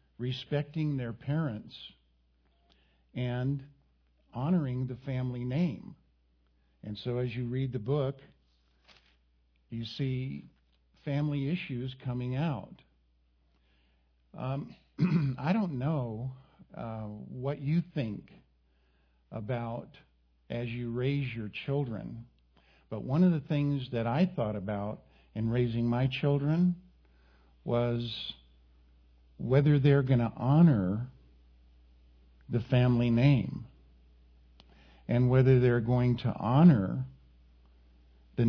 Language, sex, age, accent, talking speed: English, male, 50-69, American, 100 wpm